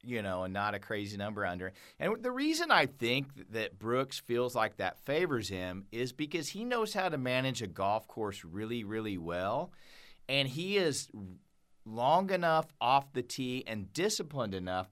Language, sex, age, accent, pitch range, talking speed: English, male, 40-59, American, 105-165 Hz, 175 wpm